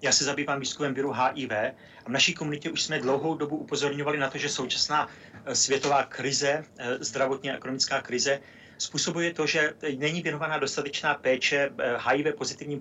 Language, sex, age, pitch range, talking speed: Czech, male, 40-59, 130-145 Hz, 160 wpm